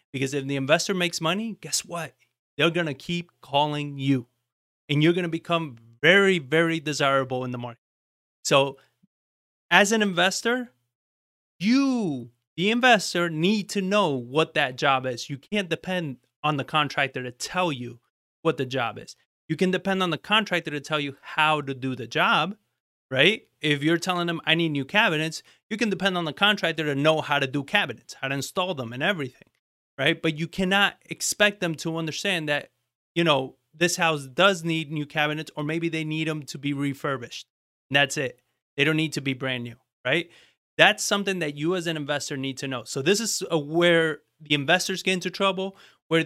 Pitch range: 140-180 Hz